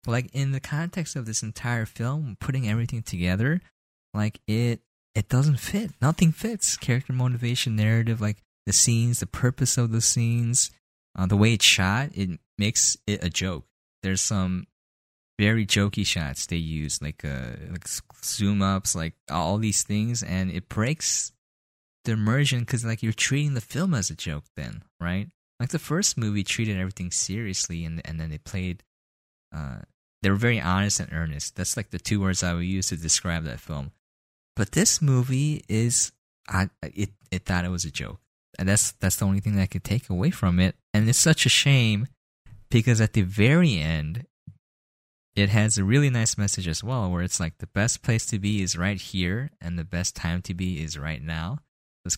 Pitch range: 90-120 Hz